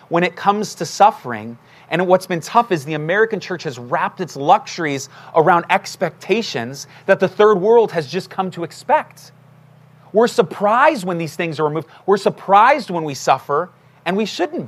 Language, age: English, 30-49